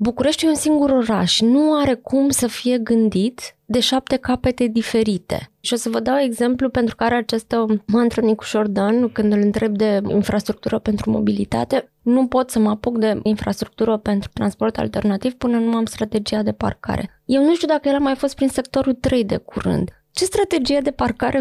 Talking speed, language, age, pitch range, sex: 185 wpm, Romanian, 20-39, 220-265 Hz, female